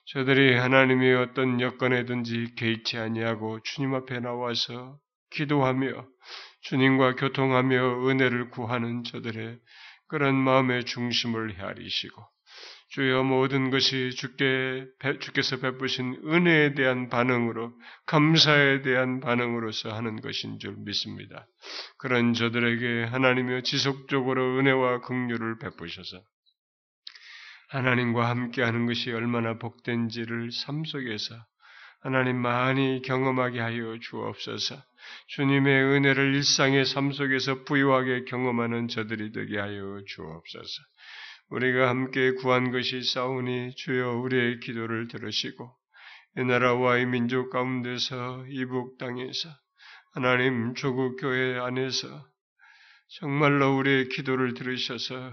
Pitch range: 120-135 Hz